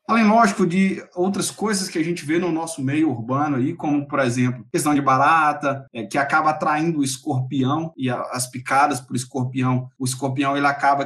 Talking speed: 200 wpm